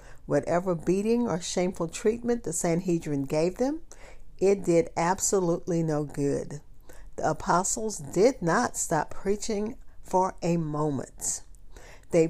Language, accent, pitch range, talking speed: English, American, 155-205 Hz, 115 wpm